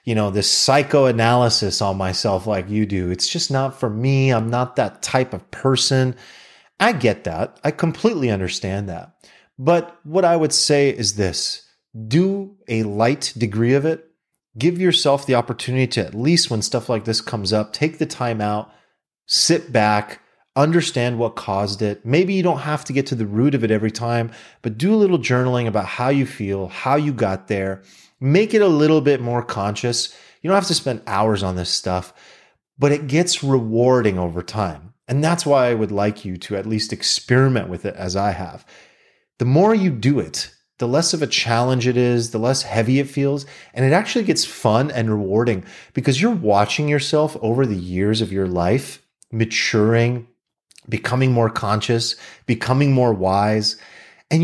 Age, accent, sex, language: 30-49, American, male, English